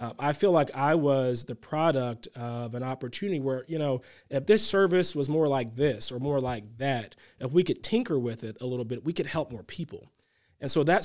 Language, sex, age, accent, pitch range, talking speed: English, male, 30-49, American, 130-165 Hz, 230 wpm